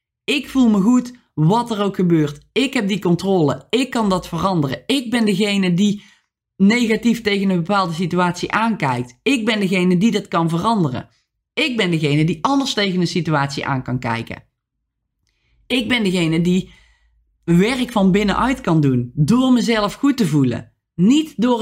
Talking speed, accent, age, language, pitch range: 165 wpm, Dutch, 20-39, Dutch, 170-235 Hz